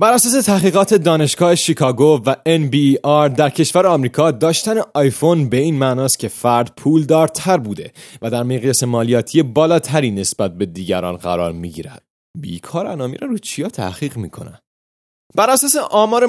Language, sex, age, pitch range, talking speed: Persian, male, 30-49, 120-180 Hz, 140 wpm